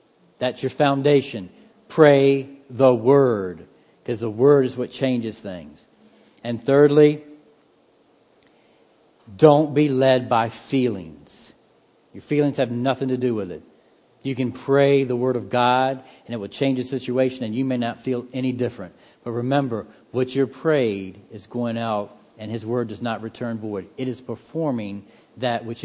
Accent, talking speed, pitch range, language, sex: American, 160 wpm, 115-145 Hz, English, male